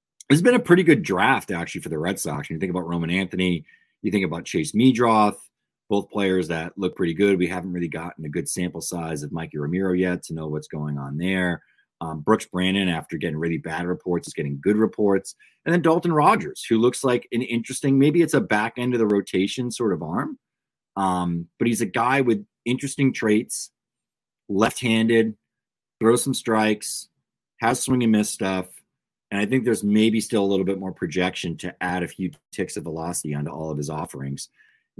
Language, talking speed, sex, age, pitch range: English, 200 wpm, male, 30-49, 90-125 Hz